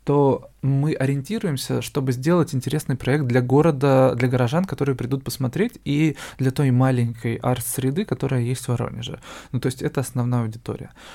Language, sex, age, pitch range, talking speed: Russian, male, 20-39, 125-140 Hz, 160 wpm